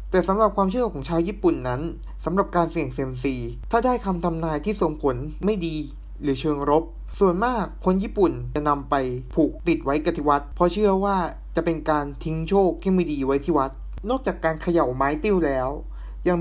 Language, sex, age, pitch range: Thai, male, 20-39, 130-170 Hz